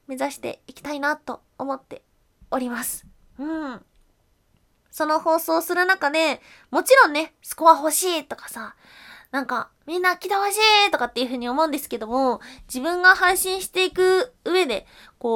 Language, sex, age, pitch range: Japanese, female, 20-39, 255-365 Hz